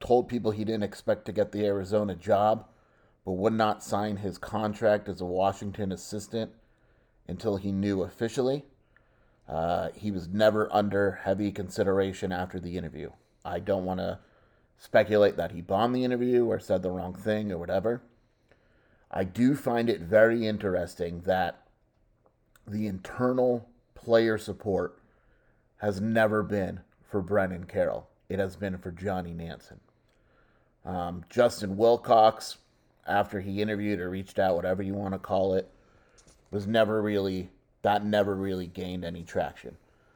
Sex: male